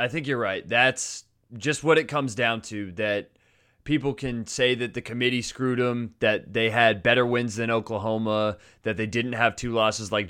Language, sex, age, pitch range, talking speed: English, male, 20-39, 110-140 Hz, 200 wpm